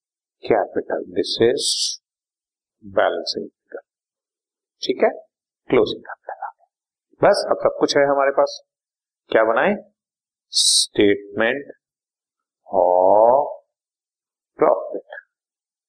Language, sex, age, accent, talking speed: Hindi, male, 50-69, native, 80 wpm